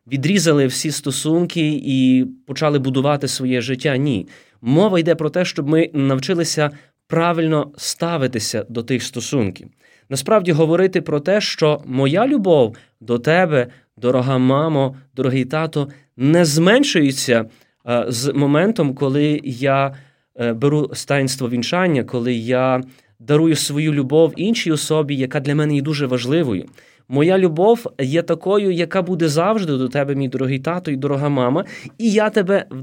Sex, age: male, 20-39